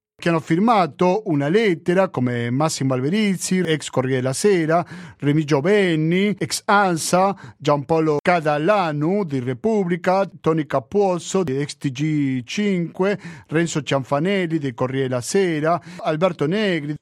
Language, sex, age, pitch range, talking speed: Italian, male, 50-69, 135-185 Hz, 115 wpm